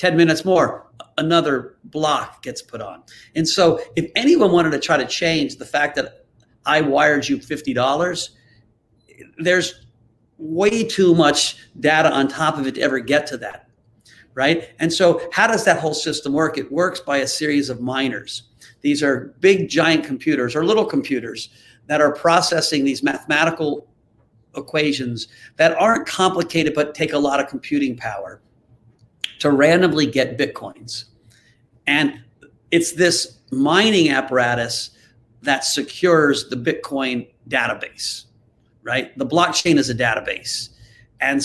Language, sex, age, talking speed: English, male, 50-69, 145 wpm